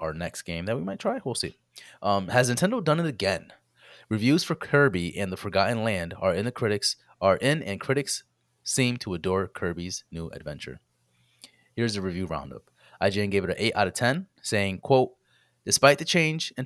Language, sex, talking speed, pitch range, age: English, male, 195 wpm, 85-115 Hz, 30-49